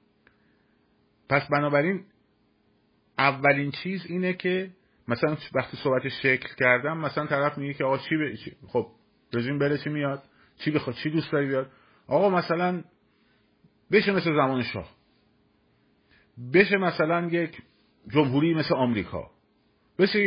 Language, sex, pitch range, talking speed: Persian, male, 105-150 Hz, 120 wpm